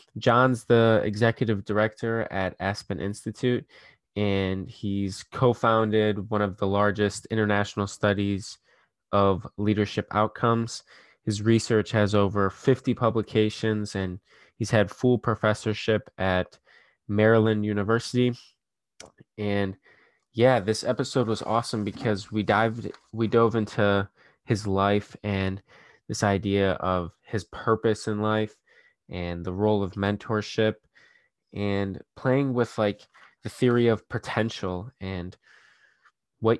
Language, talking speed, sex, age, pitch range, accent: English, 115 wpm, male, 20-39, 100-115 Hz, American